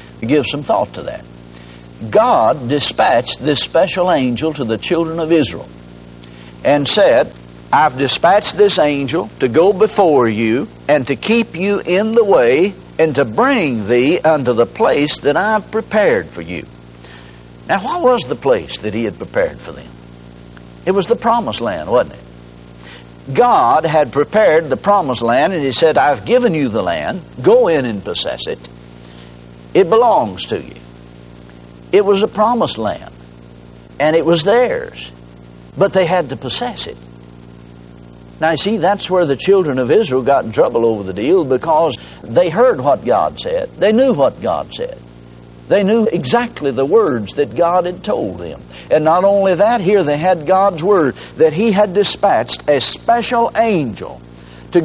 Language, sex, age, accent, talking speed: English, male, 60-79, American, 165 wpm